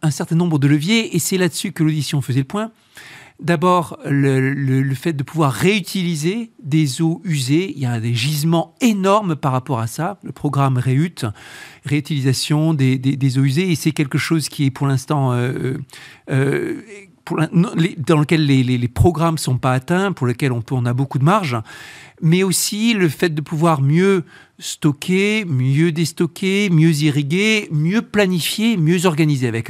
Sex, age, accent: male, 50-69, French